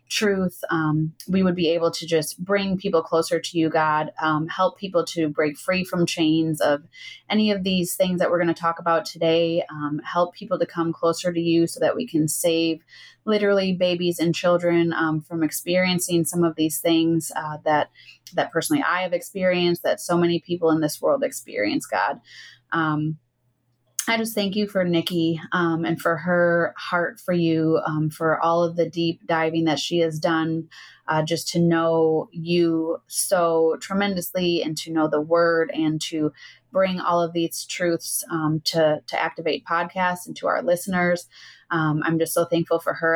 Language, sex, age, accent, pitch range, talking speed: English, female, 20-39, American, 160-175 Hz, 185 wpm